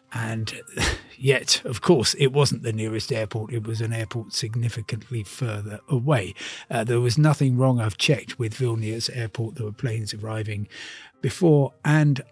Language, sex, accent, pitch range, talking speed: English, male, British, 110-135 Hz, 155 wpm